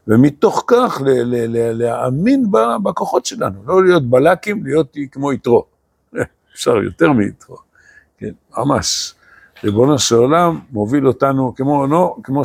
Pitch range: 105-145 Hz